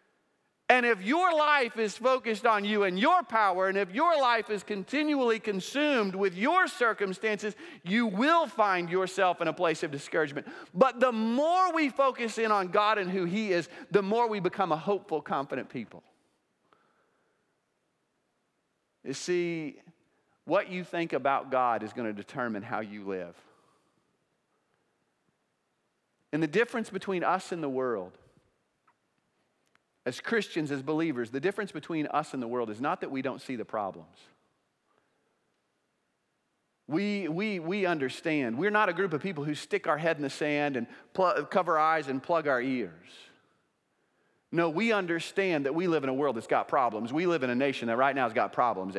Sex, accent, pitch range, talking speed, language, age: male, American, 140-215 Hz, 170 wpm, English, 40-59